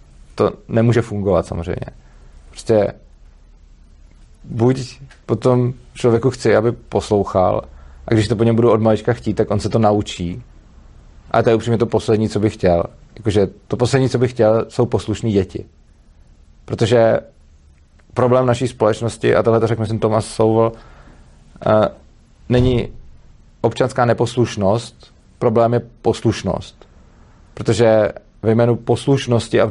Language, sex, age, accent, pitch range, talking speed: Czech, male, 40-59, native, 105-115 Hz, 135 wpm